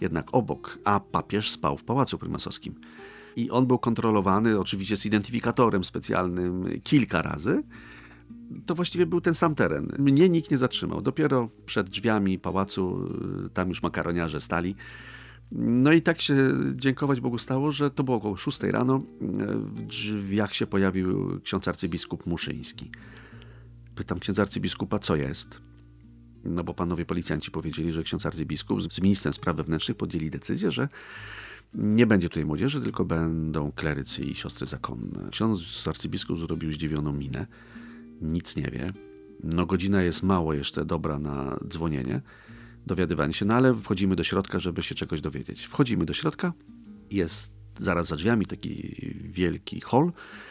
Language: Polish